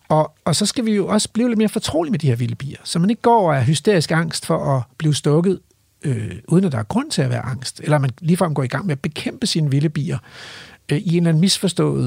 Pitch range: 135-185 Hz